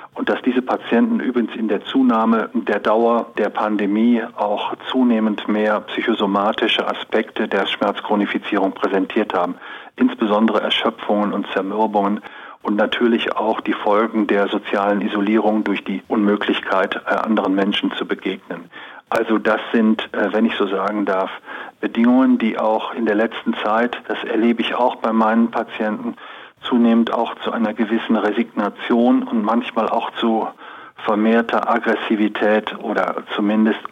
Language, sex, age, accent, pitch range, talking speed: German, male, 40-59, German, 105-115 Hz, 135 wpm